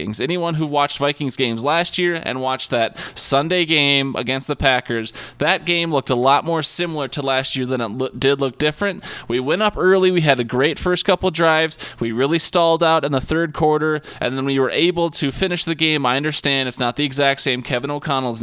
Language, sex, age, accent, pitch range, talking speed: English, male, 20-39, American, 125-155 Hz, 220 wpm